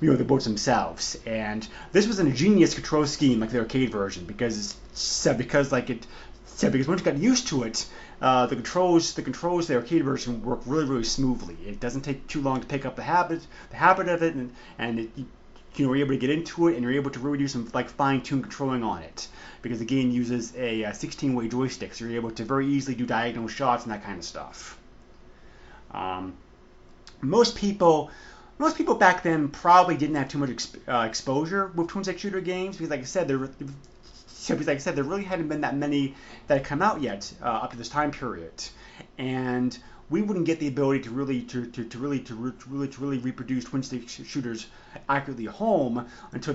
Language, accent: English, American